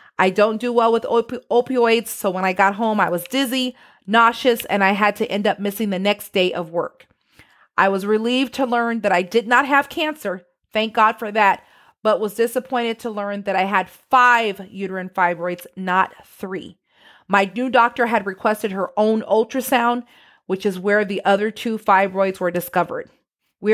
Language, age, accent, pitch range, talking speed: English, 40-59, American, 195-240 Hz, 185 wpm